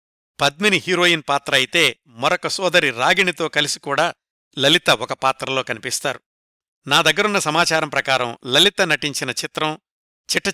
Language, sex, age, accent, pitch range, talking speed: Telugu, male, 50-69, native, 140-175 Hz, 115 wpm